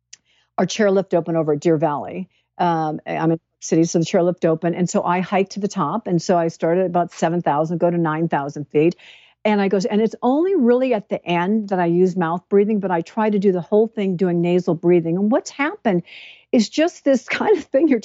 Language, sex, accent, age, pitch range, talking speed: English, female, American, 60-79, 175-220 Hz, 235 wpm